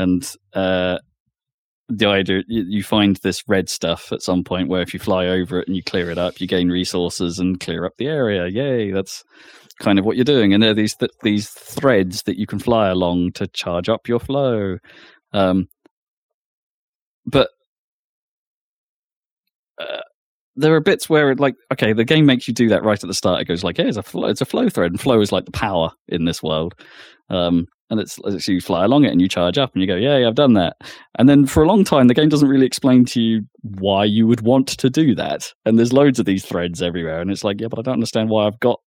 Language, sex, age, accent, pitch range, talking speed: English, male, 20-39, British, 90-115 Hz, 230 wpm